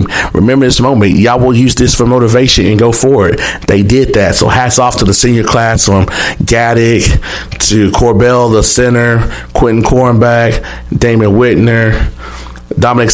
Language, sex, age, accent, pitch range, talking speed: English, male, 30-49, American, 110-130 Hz, 155 wpm